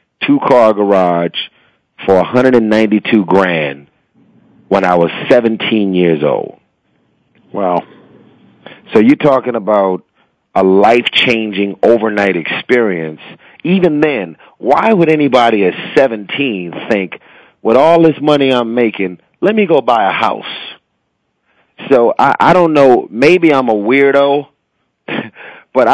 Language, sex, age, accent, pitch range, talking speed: English, male, 30-49, American, 105-130 Hz, 120 wpm